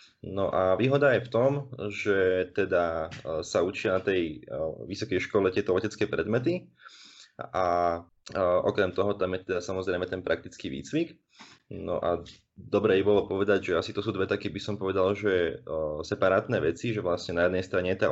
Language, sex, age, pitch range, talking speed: Slovak, male, 20-39, 95-110 Hz, 170 wpm